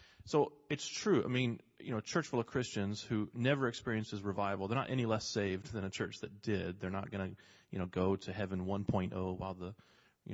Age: 30-49